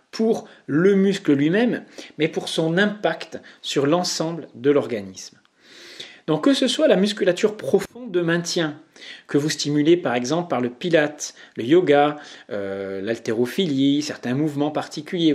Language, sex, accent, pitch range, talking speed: English, male, French, 140-195 Hz, 140 wpm